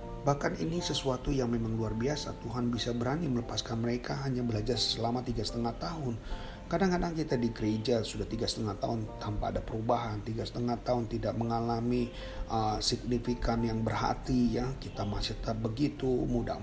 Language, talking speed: Indonesian, 160 wpm